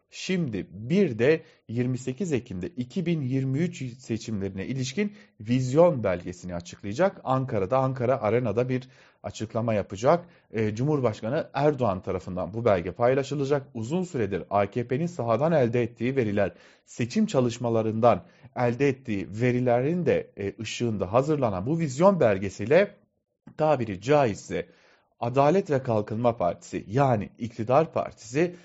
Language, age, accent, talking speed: German, 40-59, Turkish, 105 wpm